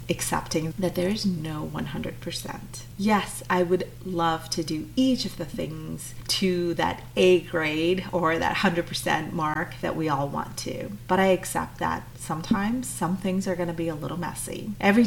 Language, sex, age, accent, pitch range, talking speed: English, female, 30-49, American, 150-190 Hz, 175 wpm